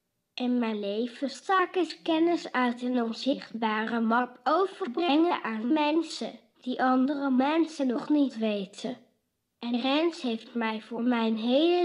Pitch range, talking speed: 230-295 Hz, 130 wpm